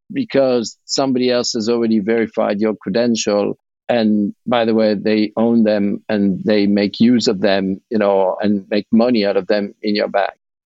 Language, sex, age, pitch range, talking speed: English, male, 50-69, 115-155 Hz, 180 wpm